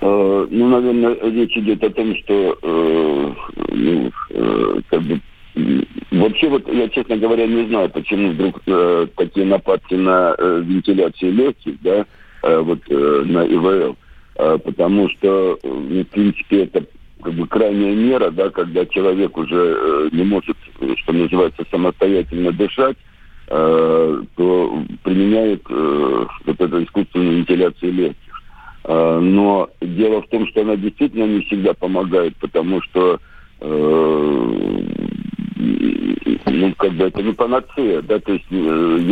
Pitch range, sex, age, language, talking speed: 90-115 Hz, male, 60-79, Russian, 125 wpm